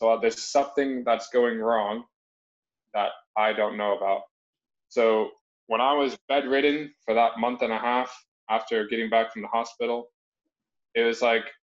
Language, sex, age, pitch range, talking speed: English, male, 20-39, 105-140 Hz, 165 wpm